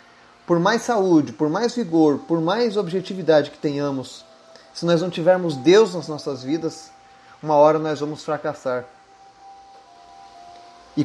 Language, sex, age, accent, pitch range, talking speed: Portuguese, male, 30-49, Brazilian, 140-175 Hz, 135 wpm